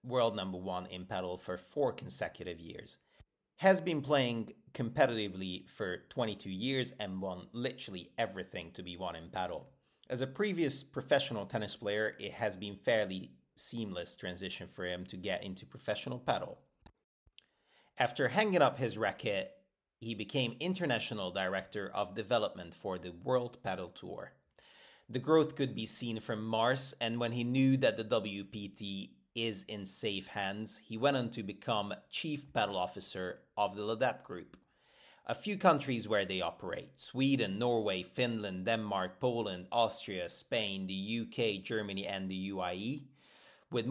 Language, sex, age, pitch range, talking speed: English, male, 30-49, 95-130 Hz, 150 wpm